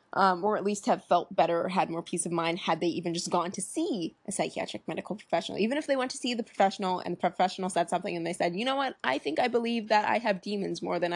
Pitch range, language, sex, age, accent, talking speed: 175-205 Hz, English, female, 20-39, American, 285 wpm